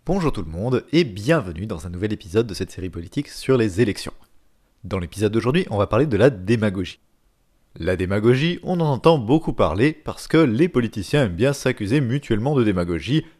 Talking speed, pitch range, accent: 195 wpm, 95-145 Hz, French